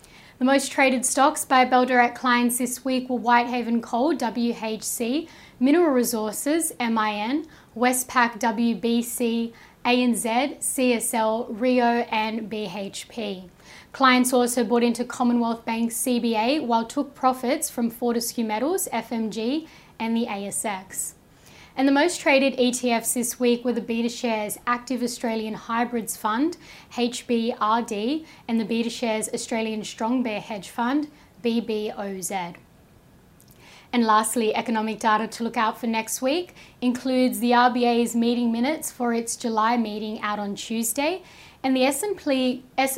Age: 10-29